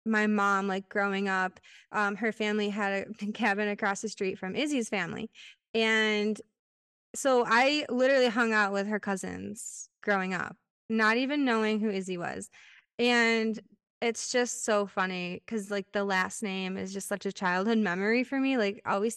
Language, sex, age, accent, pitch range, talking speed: English, female, 20-39, American, 195-245 Hz, 170 wpm